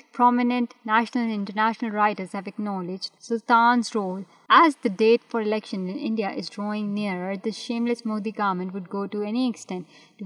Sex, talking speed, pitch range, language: female, 170 wpm, 195-235 Hz, Urdu